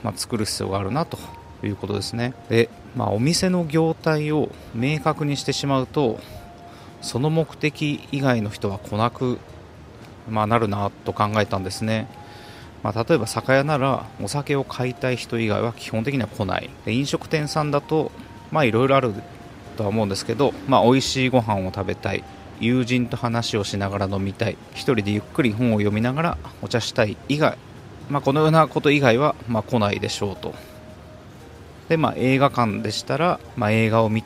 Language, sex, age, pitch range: Japanese, male, 30-49, 105-140 Hz